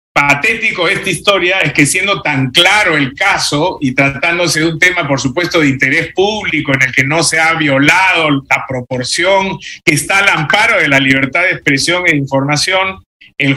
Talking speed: 180 wpm